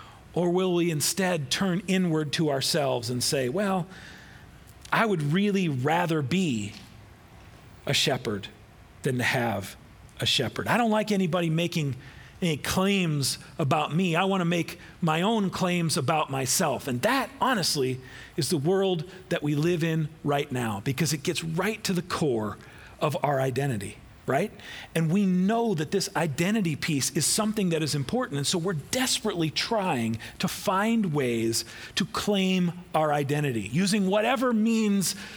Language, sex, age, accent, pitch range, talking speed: English, male, 40-59, American, 135-190 Hz, 155 wpm